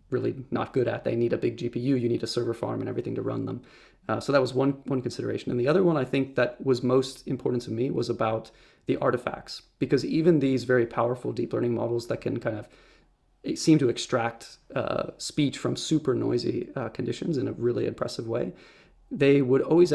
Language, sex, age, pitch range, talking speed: English, male, 30-49, 120-140 Hz, 215 wpm